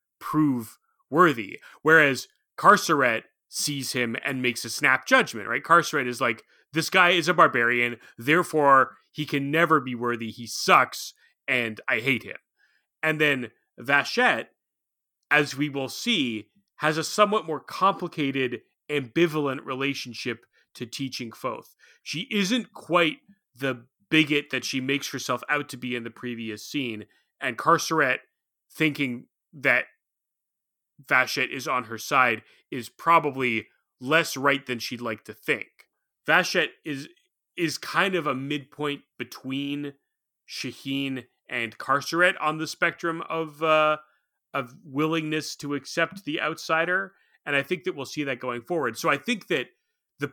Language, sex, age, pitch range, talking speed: English, male, 30-49, 130-165 Hz, 140 wpm